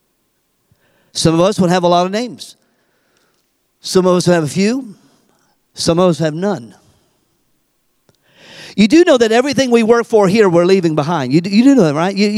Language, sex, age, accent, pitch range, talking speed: English, male, 50-69, American, 185-255 Hz, 190 wpm